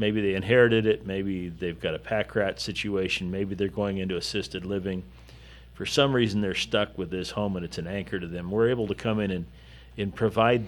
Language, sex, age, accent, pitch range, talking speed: English, male, 50-69, American, 85-110 Hz, 220 wpm